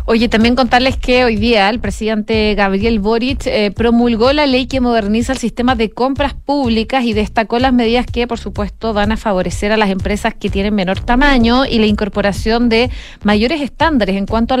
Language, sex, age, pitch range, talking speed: Spanish, female, 30-49, 210-255 Hz, 195 wpm